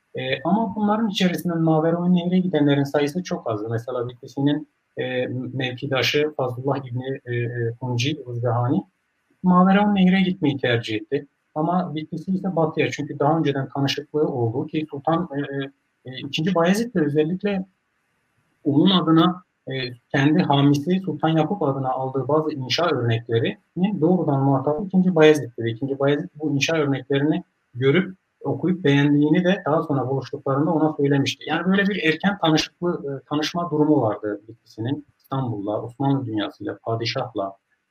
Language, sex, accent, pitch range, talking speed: Turkish, male, native, 125-160 Hz, 130 wpm